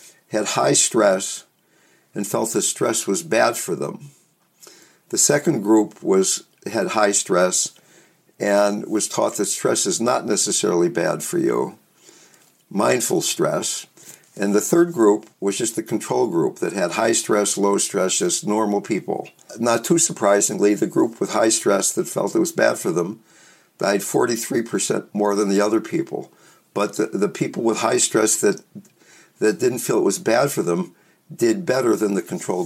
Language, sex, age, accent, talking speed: English, male, 60-79, American, 170 wpm